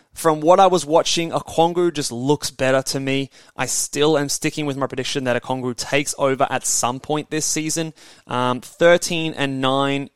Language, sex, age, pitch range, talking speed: English, male, 20-39, 125-150 Hz, 185 wpm